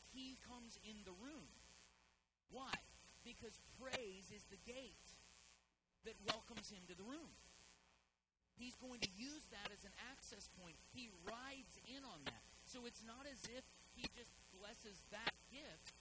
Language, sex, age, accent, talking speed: English, male, 40-59, American, 155 wpm